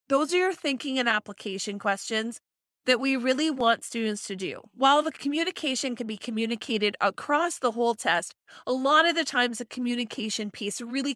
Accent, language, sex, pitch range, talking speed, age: American, English, female, 210-270 Hz, 175 wpm, 30-49